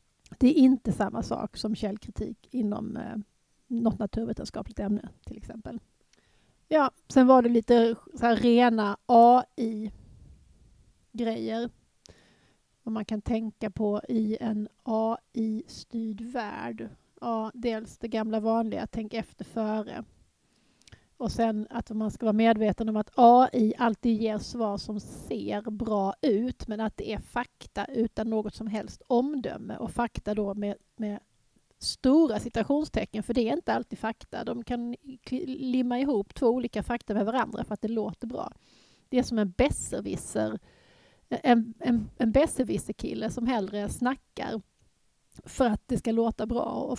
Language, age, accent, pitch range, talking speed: Swedish, 30-49, native, 215-240 Hz, 145 wpm